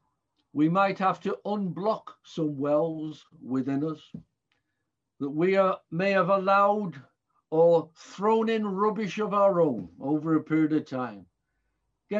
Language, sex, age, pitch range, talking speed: English, male, 60-79, 170-215 Hz, 135 wpm